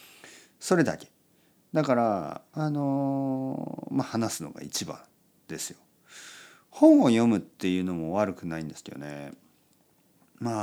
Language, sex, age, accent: Japanese, male, 40-59, native